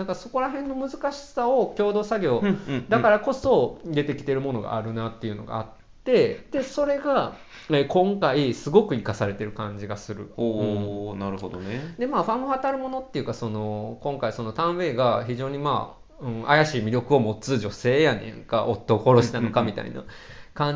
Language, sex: Japanese, male